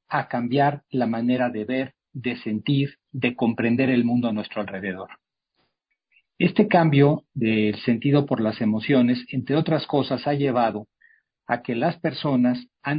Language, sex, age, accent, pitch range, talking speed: Spanish, male, 50-69, Mexican, 120-145 Hz, 150 wpm